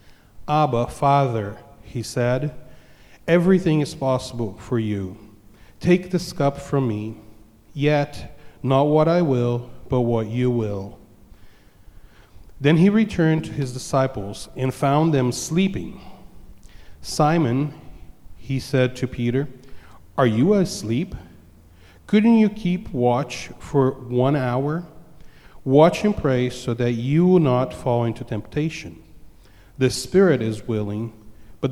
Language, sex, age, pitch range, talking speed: English, male, 40-59, 110-150 Hz, 120 wpm